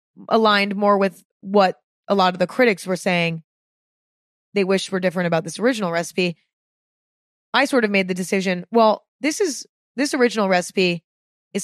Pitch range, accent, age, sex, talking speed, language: 190-245 Hz, American, 20-39, female, 160 wpm, English